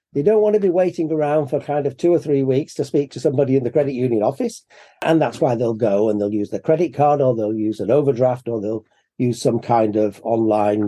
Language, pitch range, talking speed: English, 115-160 Hz, 255 wpm